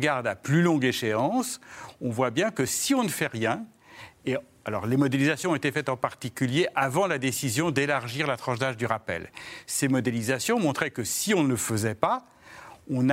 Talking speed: 190 wpm